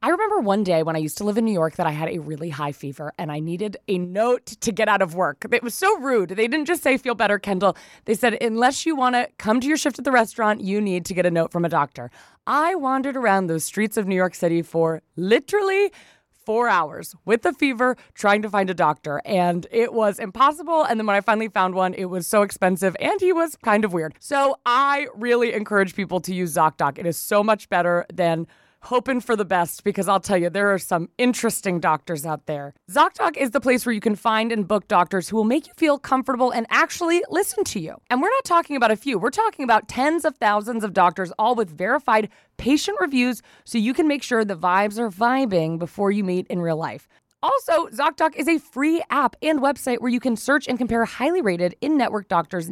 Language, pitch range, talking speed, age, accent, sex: English, 175-250 Hz, 235 wpm, 20-39, American, female